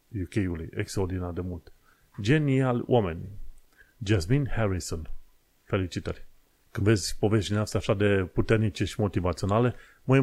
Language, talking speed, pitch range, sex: Romanian, 110 wpm, 95-115 Hz, male